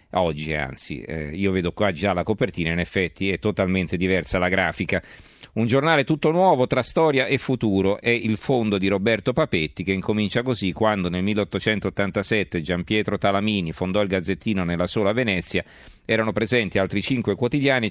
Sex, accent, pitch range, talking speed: male, native, 95-120 Hz, 170 wpm